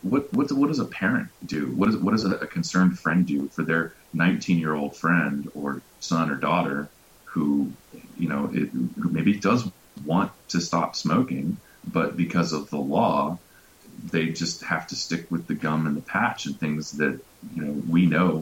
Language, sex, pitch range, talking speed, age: English, male, 70-85 Hz, 195 wpm, 30-49